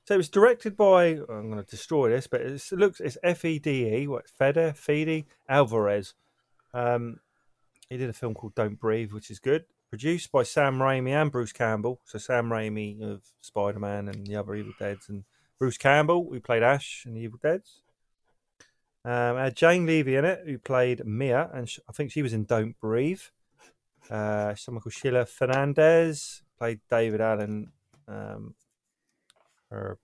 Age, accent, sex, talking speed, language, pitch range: 30-49, British, male, 180 wpm, English, 110-140 Hz